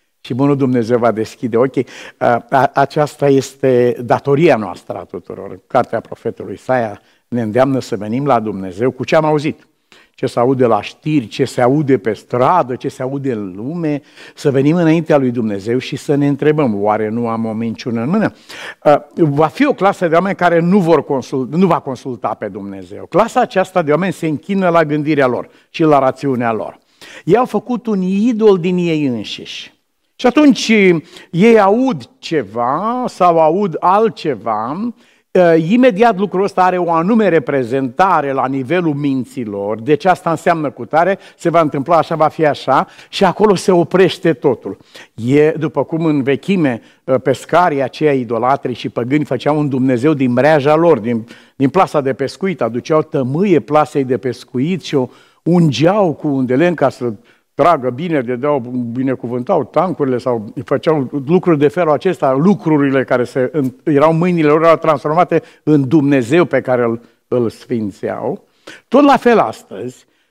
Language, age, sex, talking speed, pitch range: Romanian, 60-79, male, 165 wpm, 130-170 Hz